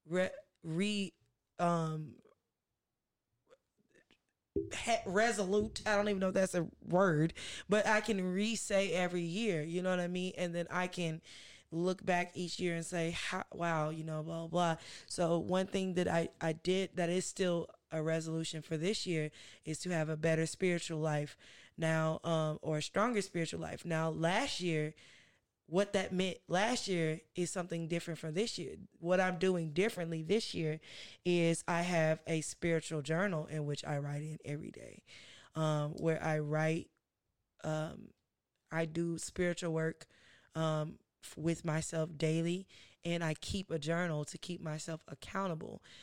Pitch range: 160-185 Hz